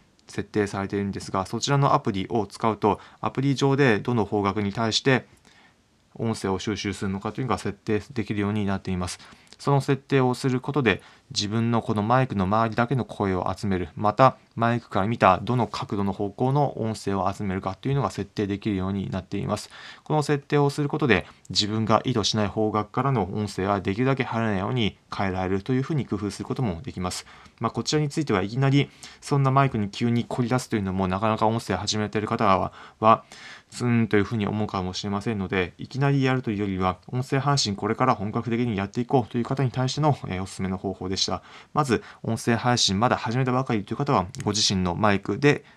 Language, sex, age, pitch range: Japanese, male, 20-39, 100-130 Hz